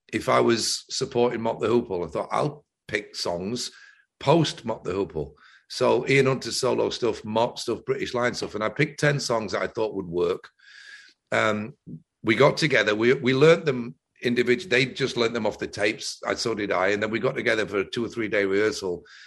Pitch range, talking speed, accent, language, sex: 120-160 Hz, 210 wpm, British, English, male